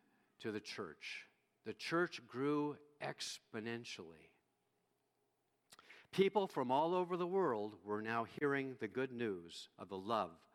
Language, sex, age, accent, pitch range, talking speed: English, male, 50-69, American, 145-200 Hz, 125 wpm